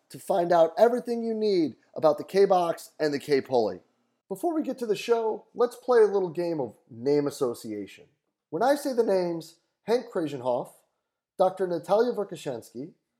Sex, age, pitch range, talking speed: male, 30-49, 165-245 Hz, 165 wpm